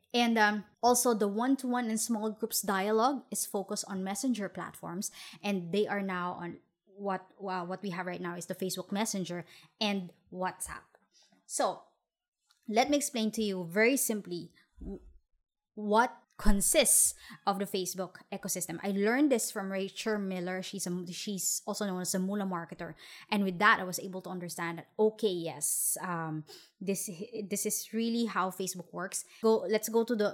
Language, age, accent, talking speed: English, 20-39, Filipino, 165 wpm